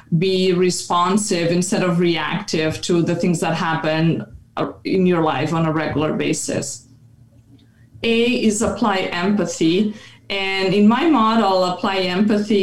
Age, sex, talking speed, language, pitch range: 20-39, female, 130 wpm, English, 170-210 Hz